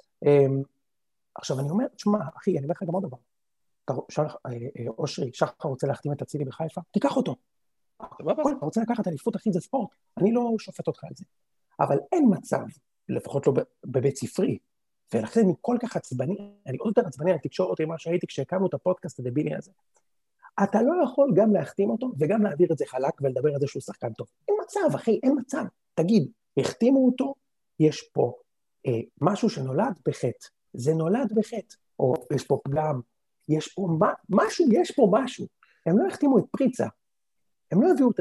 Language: Hebrew